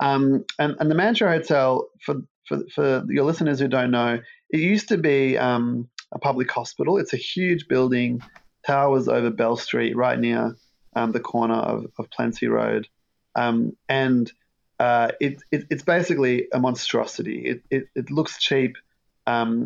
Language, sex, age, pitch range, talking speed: English, male, 30-49, 115-135 Hz, 165 wpm